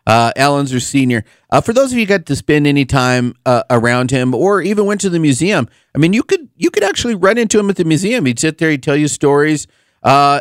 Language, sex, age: English, male, 40-59